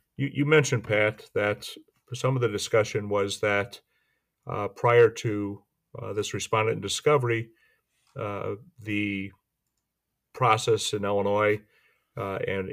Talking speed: 115 wpm